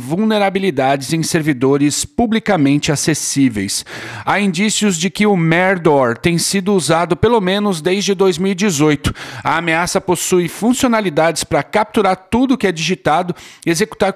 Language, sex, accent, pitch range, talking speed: Portuguese, male, Brazilian, 155-200 Hz, 125 wpm